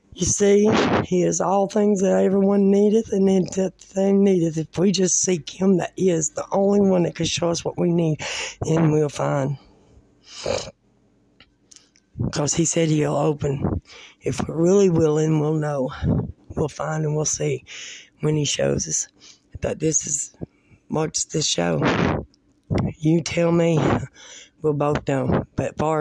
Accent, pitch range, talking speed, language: American, 145-185 Hz, 160 wpm, English